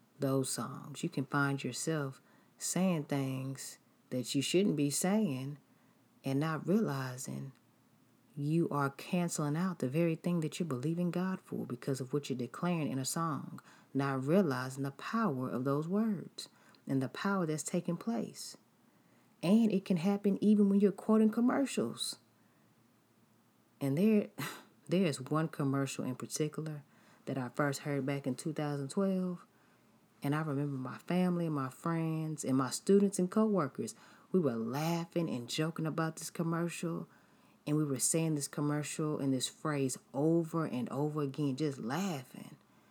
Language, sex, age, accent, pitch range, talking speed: English, female, 30-49, American, 135-180 Hz, 150 wpm